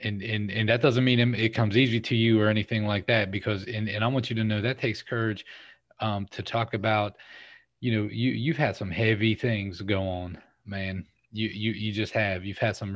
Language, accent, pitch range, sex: English, American, 105-115 Hz, male